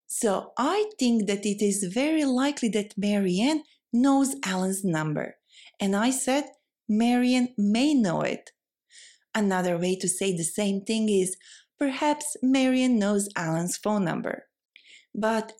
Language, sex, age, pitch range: Thai, female, 30-49, 195-285 Hz